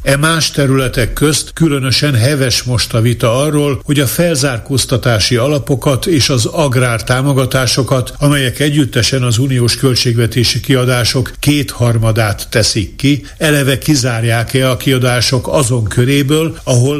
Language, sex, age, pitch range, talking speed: Hungarian, male, 60-79, 120-140 Hz, 120 wpm